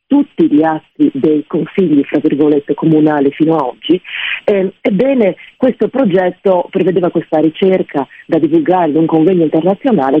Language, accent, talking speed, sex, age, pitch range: Italian, native, 135 wpm, female, 40-59, 150-195 Hz